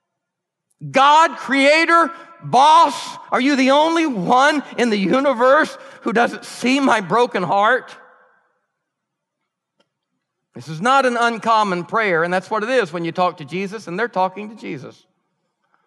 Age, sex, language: 50-69, male, English